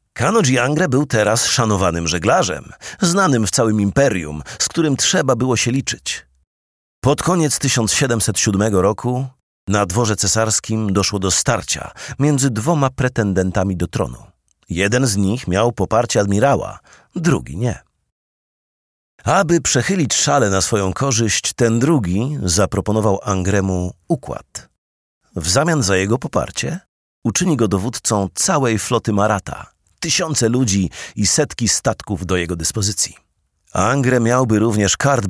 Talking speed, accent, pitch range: 125 wpm, native, 95-125 Hz